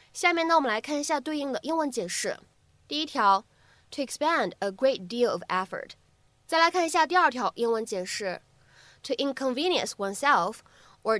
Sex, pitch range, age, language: female, 210-295 Hz, 20-39, Chinese